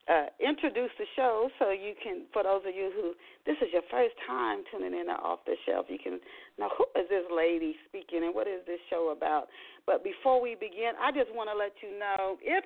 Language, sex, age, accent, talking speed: English, female, 40-59, American, 230 wpm